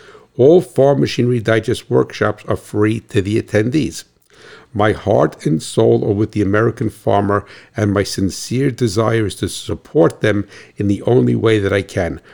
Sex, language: male, English